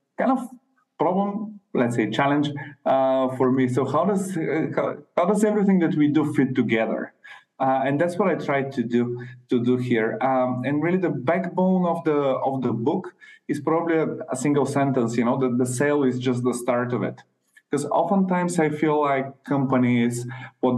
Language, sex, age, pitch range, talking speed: English, male, 20-39, 125-180 Hz, 190 wpm